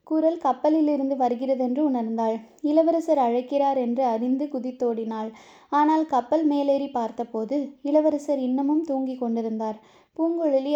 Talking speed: 100 wpm